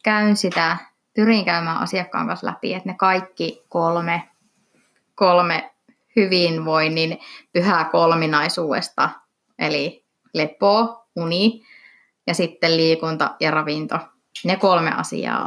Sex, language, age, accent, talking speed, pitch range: female, Finnish, 20-39, native, 100 wpm, 165-210 Hz